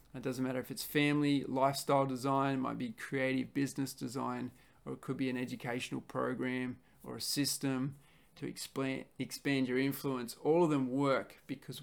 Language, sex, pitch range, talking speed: English, male, 130-155 Hz, 165 wpm